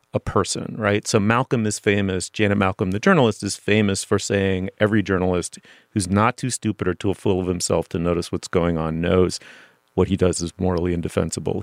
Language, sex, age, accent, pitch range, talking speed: English, male, 40-59, American, 90-115 Hz, 195 wpm